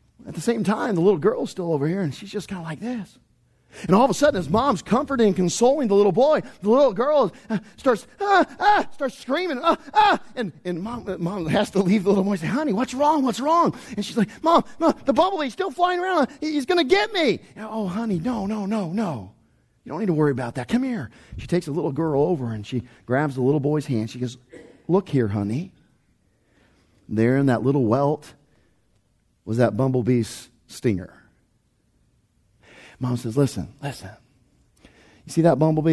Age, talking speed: 40-59, 205 wpm